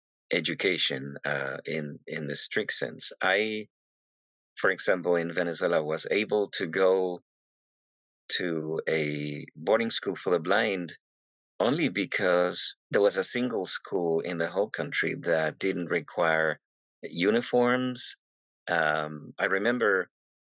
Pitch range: 75-90 Hz